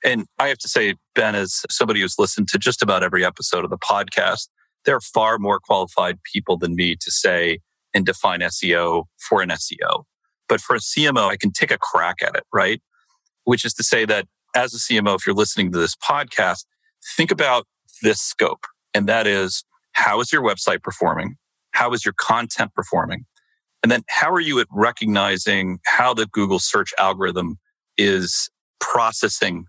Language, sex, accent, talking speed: English, male, American, 185 wpm